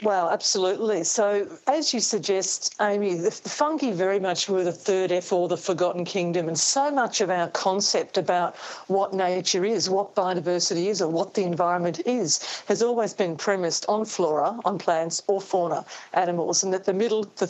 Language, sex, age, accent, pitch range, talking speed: English, female, 50-69, Australian, 180-210 Hz, 185 wpm